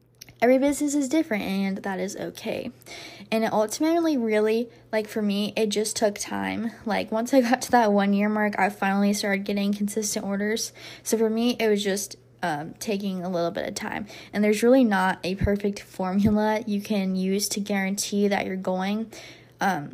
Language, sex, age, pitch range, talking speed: English, female, 10-29, 190-215 Hz, 185 wpm